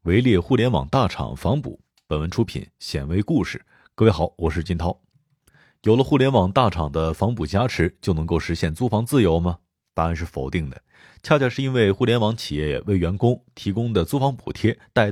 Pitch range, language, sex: 85-125 Hz, Chinese, male